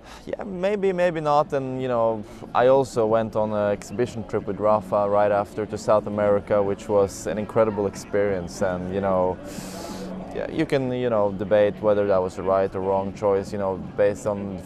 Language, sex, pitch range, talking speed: English, male, 95-110 Hz, 195 wpm